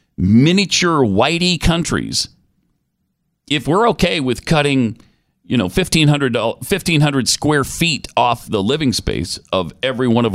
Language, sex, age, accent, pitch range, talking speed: English, male, 40-59, American, 105-165 Hz, 130 wpm